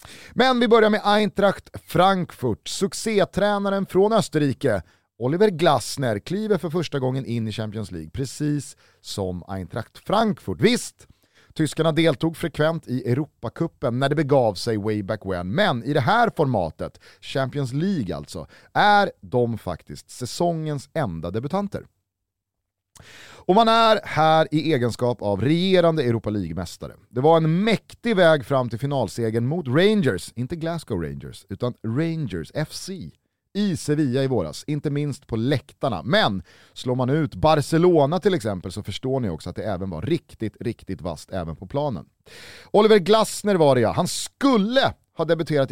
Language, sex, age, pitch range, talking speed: Swedish, male, 30-49, 110-170 Hz, 150 wpm